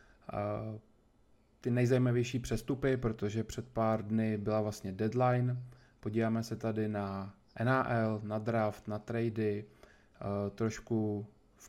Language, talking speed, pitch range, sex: Czech, 110 wpm, 105-115 Hz, male